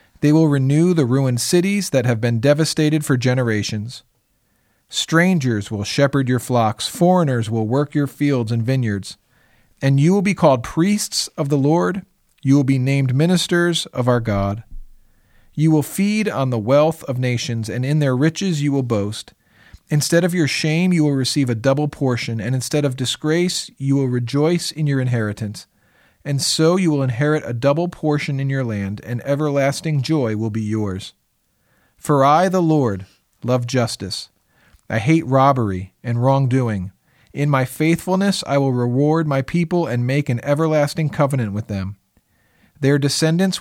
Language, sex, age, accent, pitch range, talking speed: English, male, 40-59, American, 120-155 Hz, 165 wpm